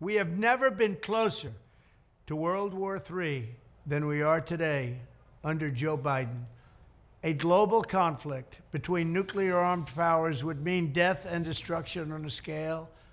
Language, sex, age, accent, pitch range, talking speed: English, male, 60-79, American, 150-210 Hz, 135 wpm